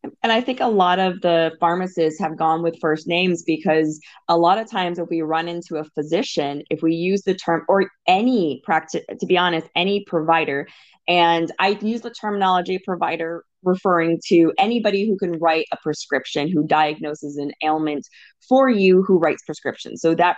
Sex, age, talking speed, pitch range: female, 20-39, 185 wpm, 160-205 Hz